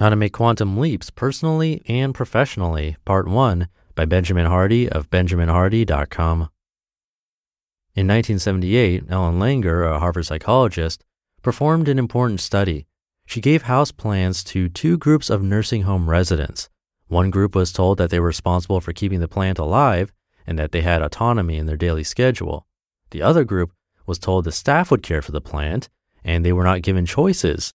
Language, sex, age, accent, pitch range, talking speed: English, male, 30-49, American, 85-115 Hz, 165 wpm